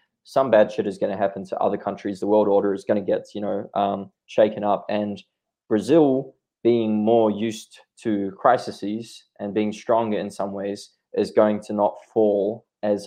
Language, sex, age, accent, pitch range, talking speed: English, male, 20-39, Australian, 100-120 Hz, 190 wpm